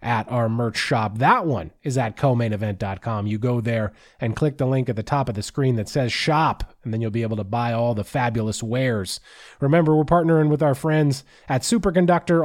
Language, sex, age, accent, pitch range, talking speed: English, male, 30-49, American, 130-170 Hz, 210 wpm